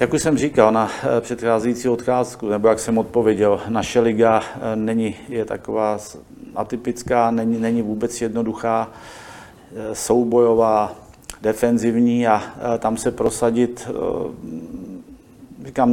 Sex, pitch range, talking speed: male, 115-120 Hz, 105 wpm